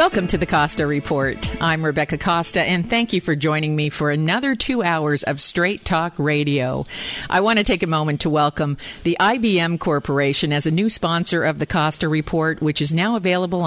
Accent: American